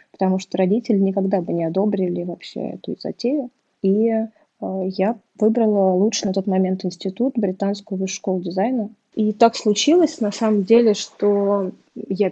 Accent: native